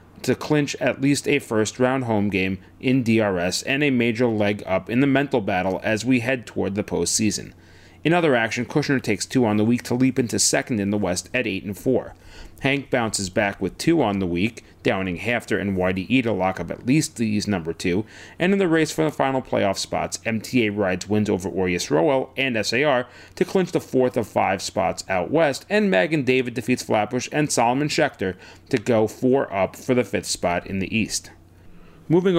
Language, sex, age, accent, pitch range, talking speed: English, male, 30-49, American, 100-140 Hz, 205 wpm